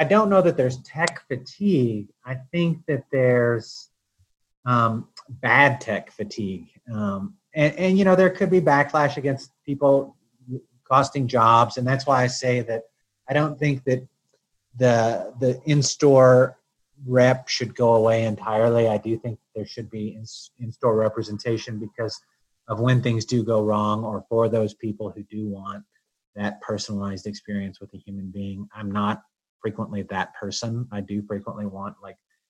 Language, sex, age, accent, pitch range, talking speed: English, male, 30-49, American, 110-140 Hz, 155 wpm